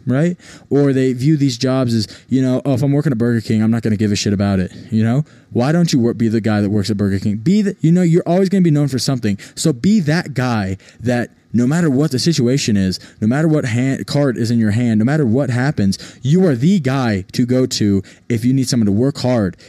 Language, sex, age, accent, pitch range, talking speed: English, male, 20-39, American, 115-155 Hz, 265 wpm